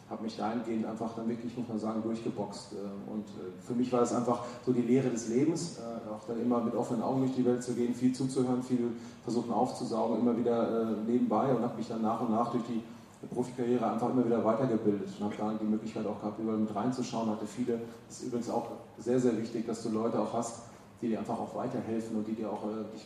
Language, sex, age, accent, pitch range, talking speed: German, male, 30-49, German, 110-120 Hz, 230 wpm